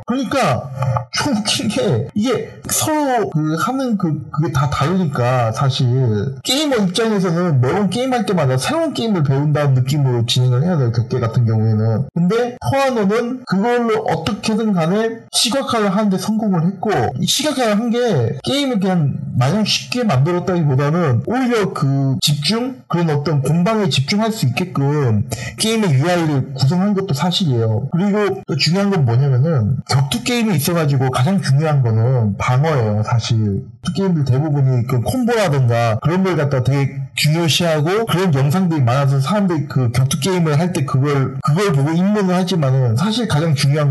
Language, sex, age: Korean, male, 40-59